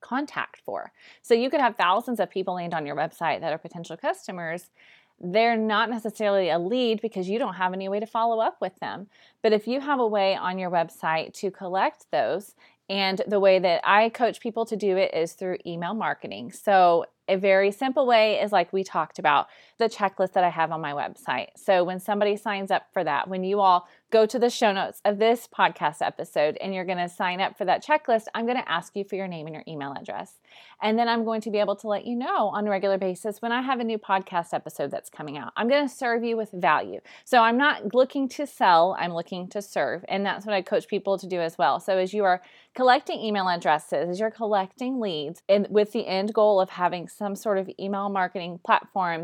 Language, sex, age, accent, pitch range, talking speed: English, female, 30-49, American, 185-225 Hz, 235 wpm